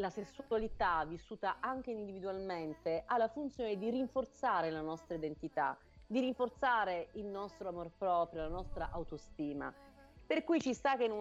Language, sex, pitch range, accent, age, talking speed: Italian, female, 180-230 Hz, native, 40-59, 155 wpm